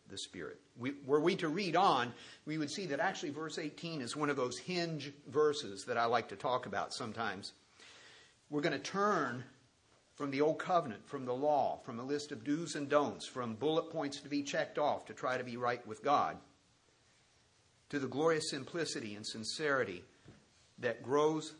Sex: male